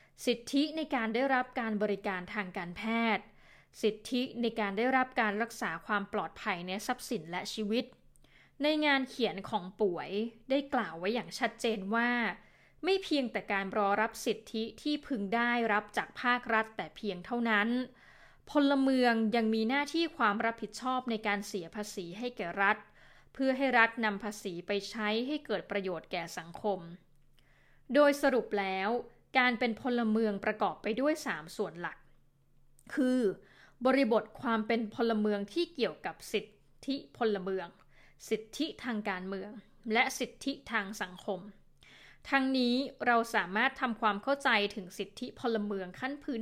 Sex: female